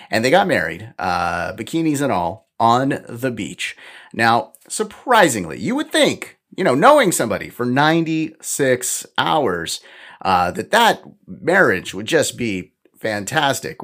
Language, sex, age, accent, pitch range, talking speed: English, male, 30-49, American, 120-180 Hz, 135 wpm